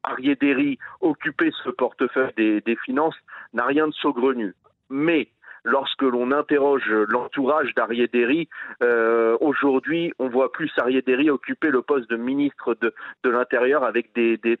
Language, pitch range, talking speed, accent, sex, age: French, 125-180 Hz, 145 wpm, French, male, 40-59